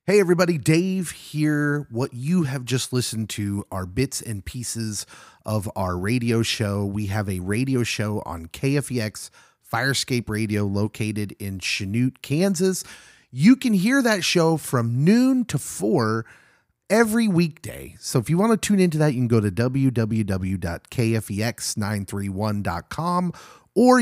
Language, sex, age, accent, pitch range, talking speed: English, male, 30-49, American, 105-155 Hz, 140 wpm